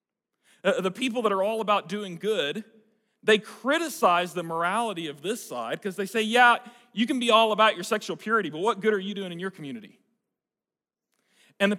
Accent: American